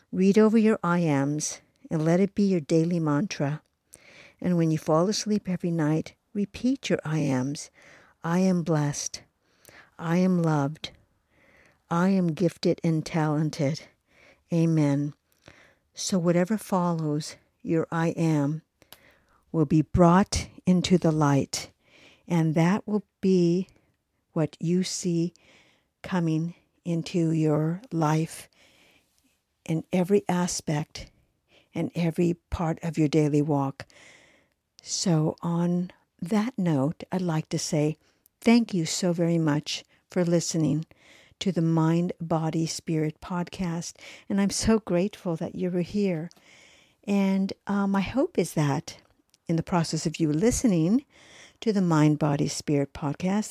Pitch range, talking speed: 155-190 Hz, 130 wpm